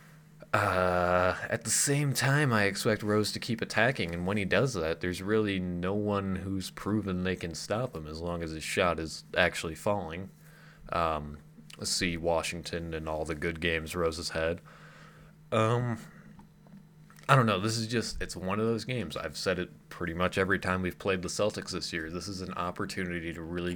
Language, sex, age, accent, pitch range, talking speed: English, male, 20-39, American, 85-115 Hz, 190 wpm